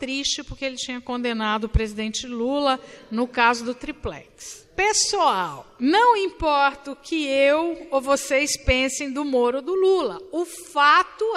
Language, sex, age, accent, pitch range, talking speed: Portuguese, female, 50-69, Brazilian, 240-320 Hz, 150 wpm